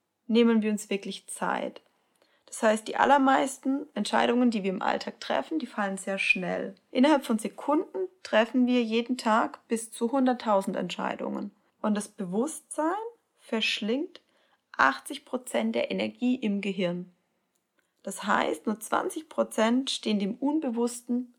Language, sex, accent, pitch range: German, female, German, 210-265 Hz